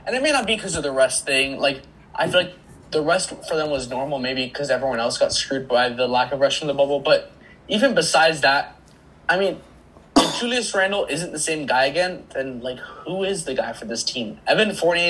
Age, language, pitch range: 20-39, English, 140-205 Hz